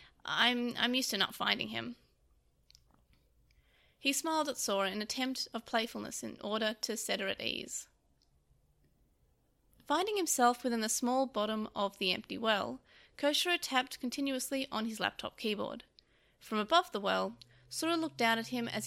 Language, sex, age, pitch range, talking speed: English, female, 30-49, 210-270 Hz, 160 wpm